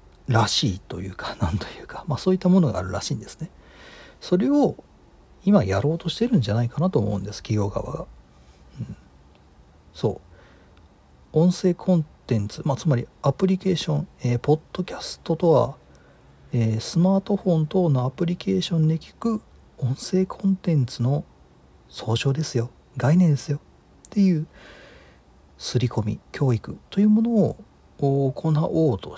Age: 40-59